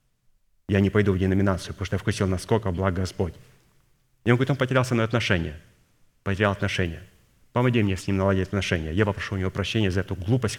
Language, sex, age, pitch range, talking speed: Russian, male, 30-49, 90-110 Hz, 205 wpm